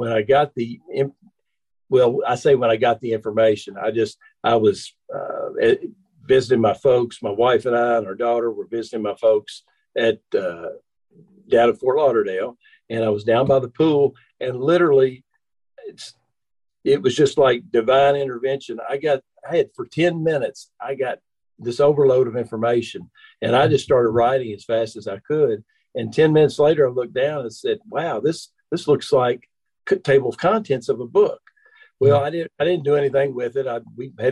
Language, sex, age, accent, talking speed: English, male, 50-69, American, 190 wpm